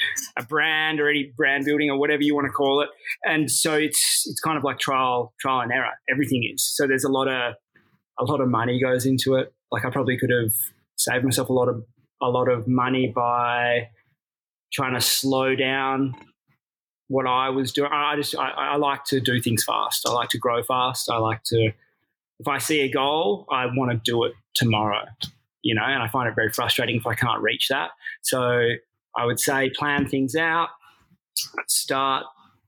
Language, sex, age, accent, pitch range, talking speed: English, male, 20-39, Australian, 120-140 Hz, 200 wpm